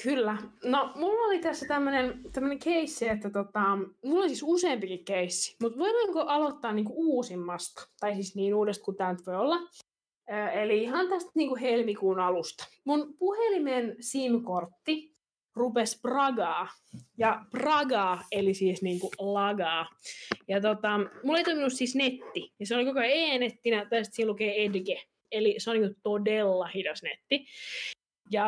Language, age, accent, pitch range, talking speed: Finnish, 20-39, native, 200-280 Hz, 150 wpm